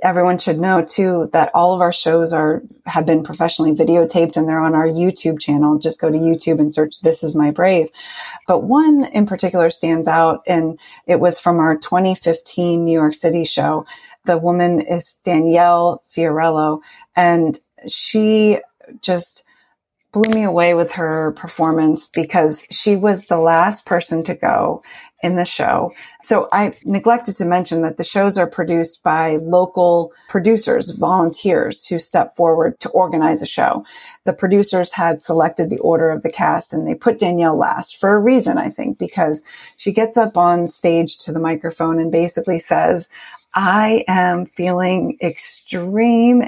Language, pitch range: English, 165-200 Hz